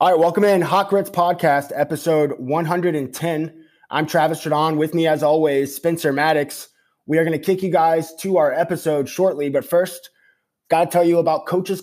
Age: 20-39